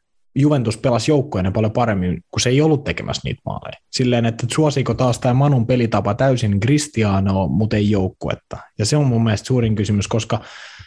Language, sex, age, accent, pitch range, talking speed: Finnish, male, 20-39, native, 100-135 Hz, 175 wpm